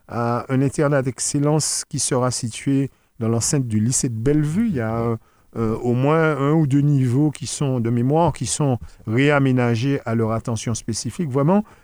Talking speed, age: 180 wpm, 50-69